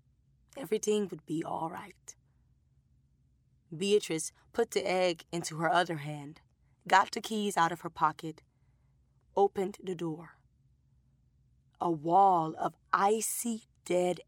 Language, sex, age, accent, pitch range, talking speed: English, female, 20-39, American, 155-190 Hz, 120 wpm